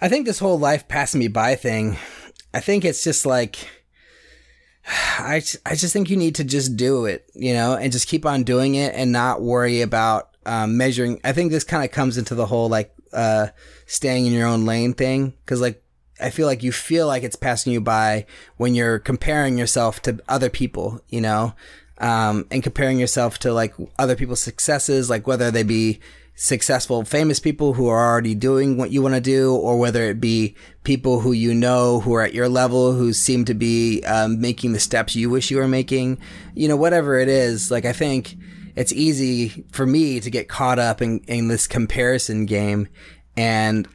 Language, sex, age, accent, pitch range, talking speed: English, male, 30-49, American, 115-130 Hz, 205 wpm